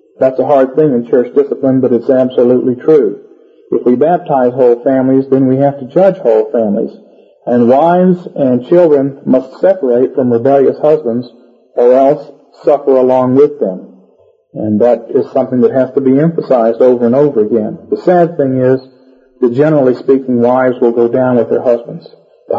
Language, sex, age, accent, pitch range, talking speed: English, male, 50-69, American, 130-175 Hz, 175 wpm